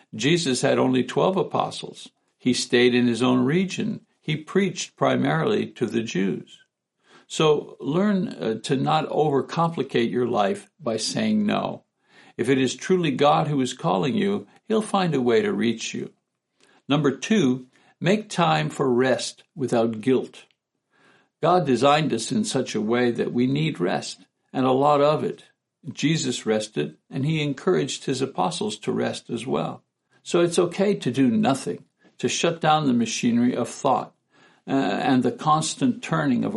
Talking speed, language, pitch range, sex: 160 wpm, English, 125-195 Hz, male